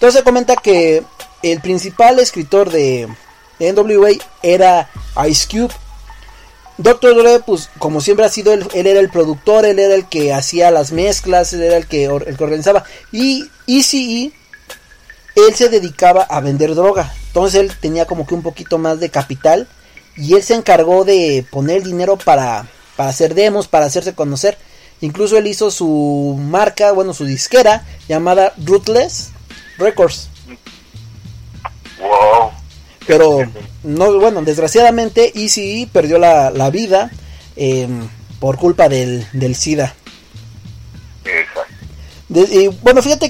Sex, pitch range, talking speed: male, 145-210 Hz, 140 wpm